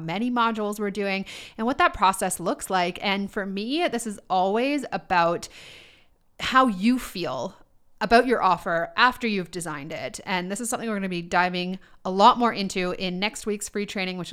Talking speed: 195 wpm